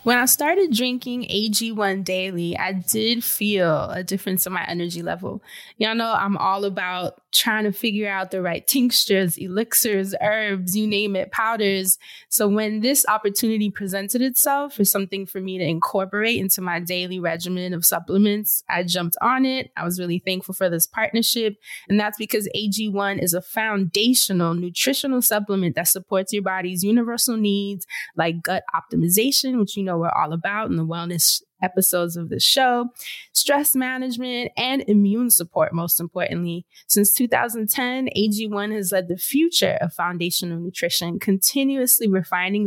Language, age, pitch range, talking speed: English, 20-39, 185-225 Hz, 160 wpm